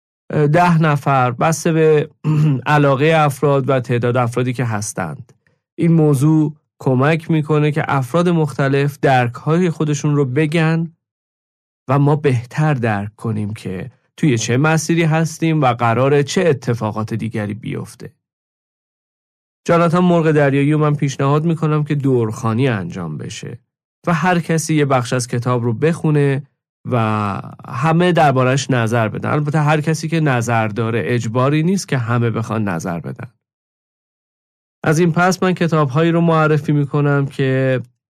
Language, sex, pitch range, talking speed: Persian, male, 125-155 Hz, 135 wpm